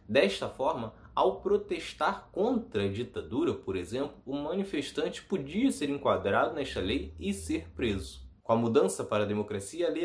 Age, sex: 20-39, male